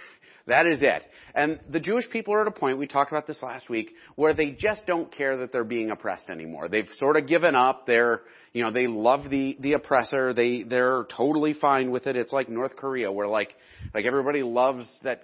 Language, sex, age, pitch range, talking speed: English, male, 40-59, 125-155 Hz, 225 wpm